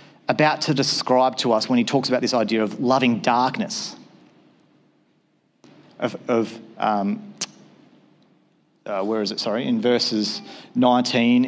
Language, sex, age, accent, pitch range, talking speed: English, male, 40-59, Australian, 125-155 Hz, 130 wpm